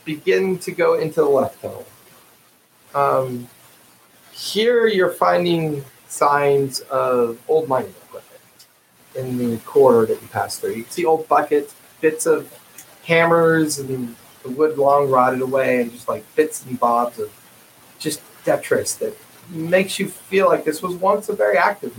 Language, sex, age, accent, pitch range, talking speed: English, male, 40-59, American, 135-210 Hz, 155 wpm